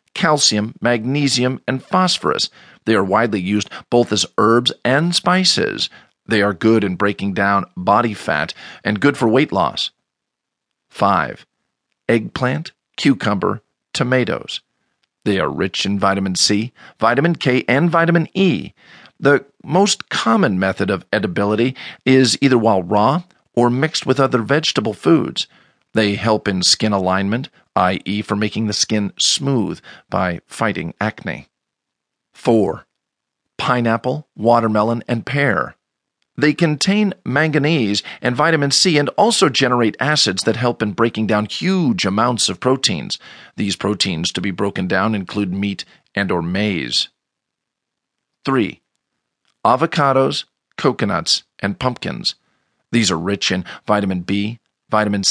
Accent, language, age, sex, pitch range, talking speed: American, English, 40-59, male, 105-140 Hz, 130 wpm